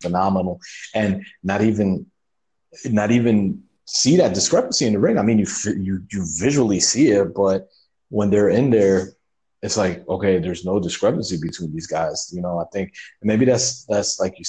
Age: 30-49